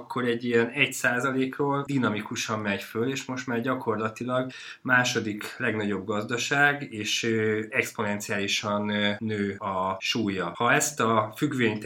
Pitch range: 110-135 Hz